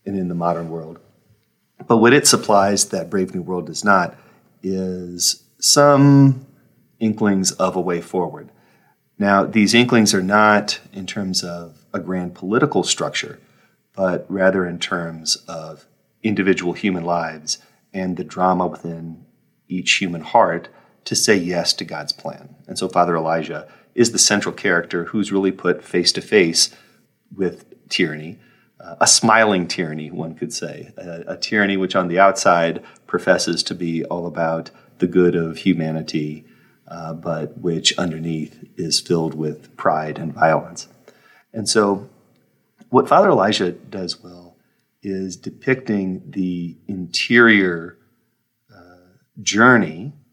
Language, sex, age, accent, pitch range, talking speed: English, male, 40-59, American, 85-100 Hz, 135 wpm